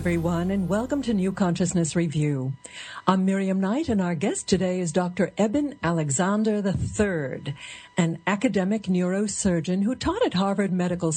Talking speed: 145 wpm